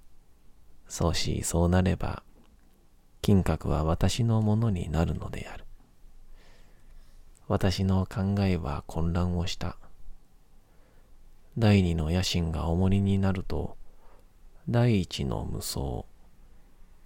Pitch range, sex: 85-100 Hz, male